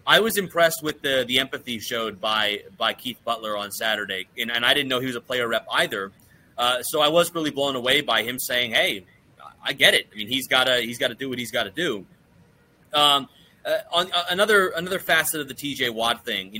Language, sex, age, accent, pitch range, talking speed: English, male, 30-49, American, 125-160 Hz, 230 wpm